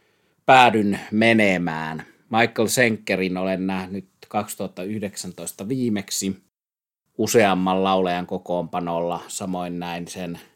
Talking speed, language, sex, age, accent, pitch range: 80 wpm, Finnish, male, 30-49, native, 90-100 Hz